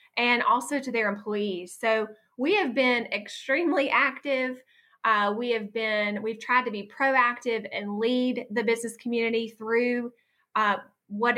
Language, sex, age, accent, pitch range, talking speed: English, female, 20-39, American, 205-250 Hz, 150 wpm